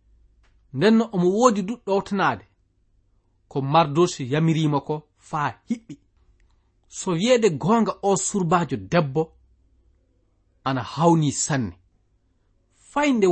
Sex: male